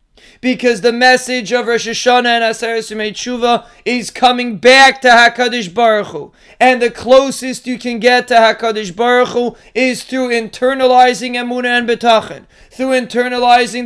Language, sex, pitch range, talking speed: English, male, 235-260 Hz, 150 wpm